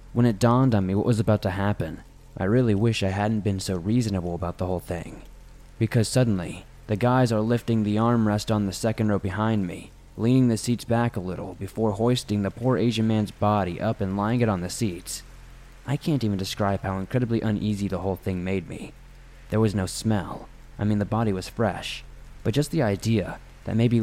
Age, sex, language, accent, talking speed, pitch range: 20-39, male, English, American, 210 wpm, 95-115 Hz